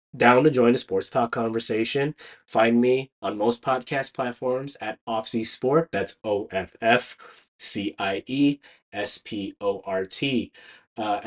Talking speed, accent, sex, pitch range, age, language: 160 wpm, American, male, 110-130 Hz, 20-39, English